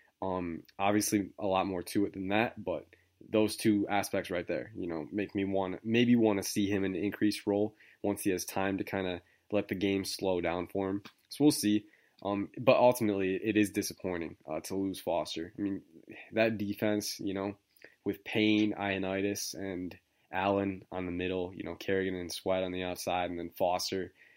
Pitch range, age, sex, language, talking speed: 95-105 Hz, 20-39, male, English, 200 wpm